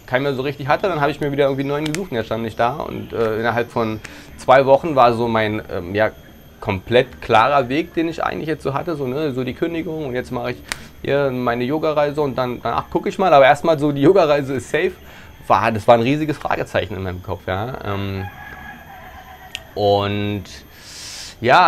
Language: German